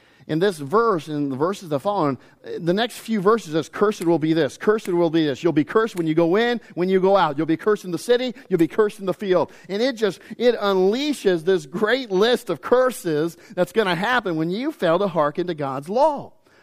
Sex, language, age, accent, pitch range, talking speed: male, English, 40-59, American, 165-220 Hz, 240 wpm